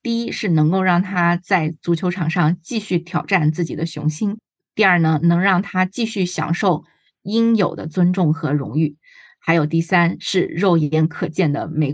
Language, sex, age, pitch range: Chinese, female, 20-39, 155-190 Hz